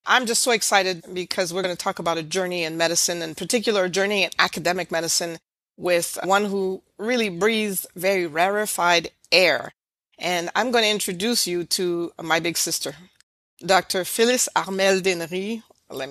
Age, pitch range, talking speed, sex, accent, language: 40-59, 175-215 Hz, 165 wpm, female, American, English